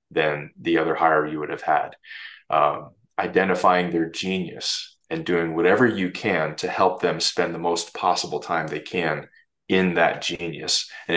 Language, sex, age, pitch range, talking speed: English, male, 20-39, 85-105 Hz, 165 wpm